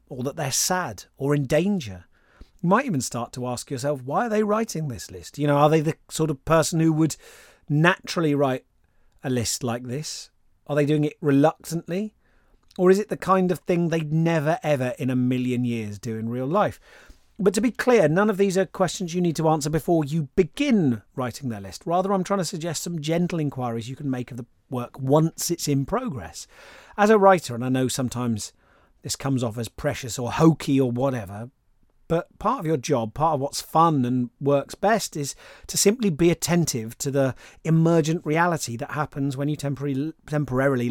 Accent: British